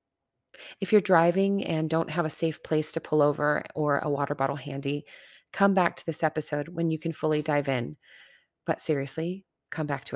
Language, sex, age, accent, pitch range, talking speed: English, female, 30-49, American, 150-175 Hz, 195 wpm